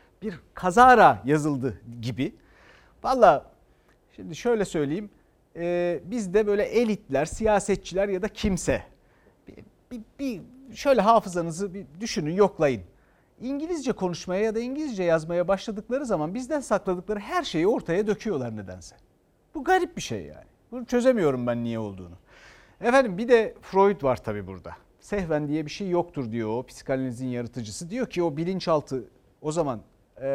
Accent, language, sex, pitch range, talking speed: native, Turkish, male, 140-205 Hz, 140 wpm